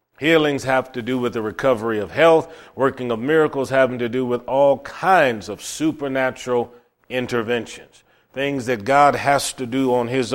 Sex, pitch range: male, 120-145 Hz